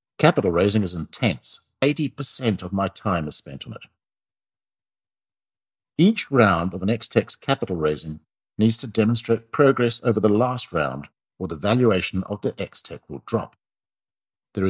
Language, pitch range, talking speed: English, 90-120 Hz, 145 wpm